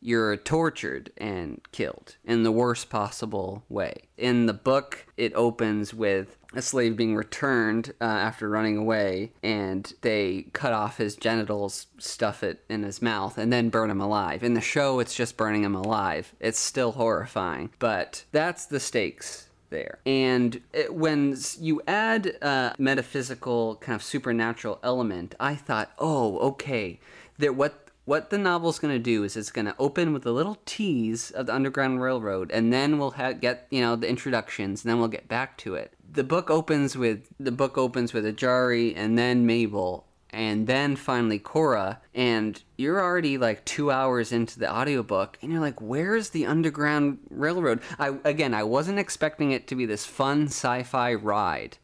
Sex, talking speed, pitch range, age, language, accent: male, 170 wpm, 110-140 Hz, 20-39, English, American